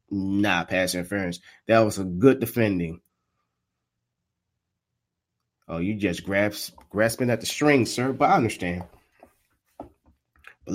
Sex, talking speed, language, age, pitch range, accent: male, 115 wpm, English, 30-49, 100-140 Hz, American